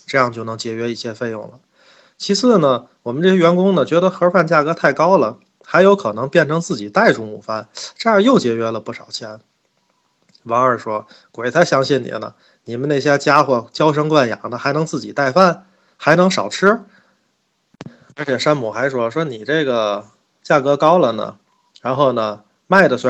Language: Chinese